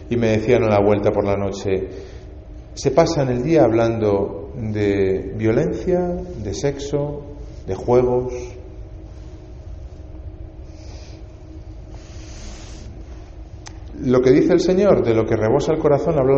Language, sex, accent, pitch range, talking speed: Spanish, male, Spanish, 105-140 Hz, 115 wpm